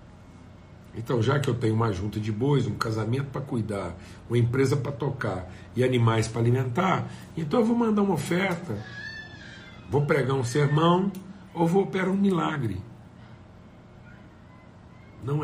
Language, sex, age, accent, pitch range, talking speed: Portuguese, male, 60-79, Brazilian, 105-155 Hz, 145 wpm